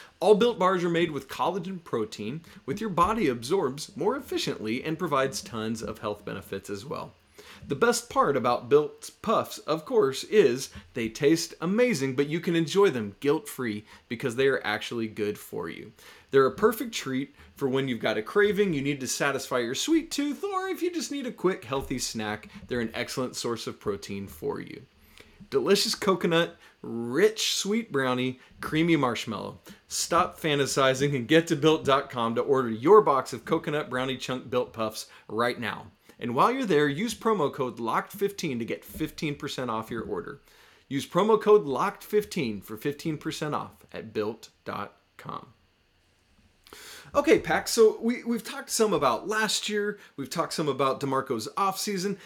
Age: 30-49